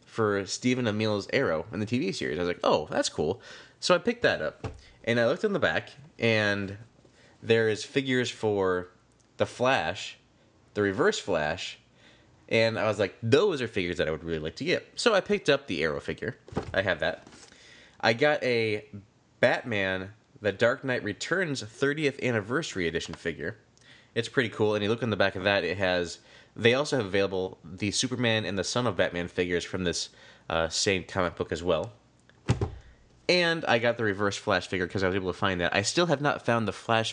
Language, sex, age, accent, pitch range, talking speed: English, male, 20-39, American, 90-120 Hz, 200 wpm